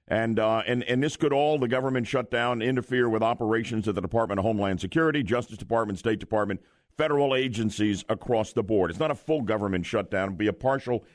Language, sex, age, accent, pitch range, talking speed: English, male, 50-69, American, 110-140 Hz, 215 wpm